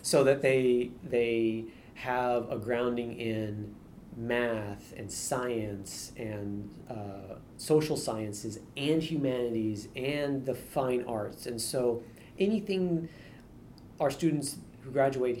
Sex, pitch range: male, 110-135 Hz